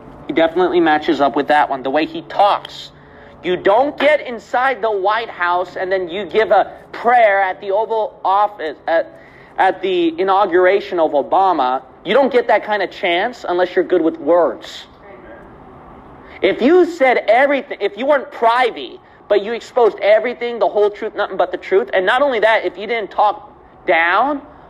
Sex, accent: male, American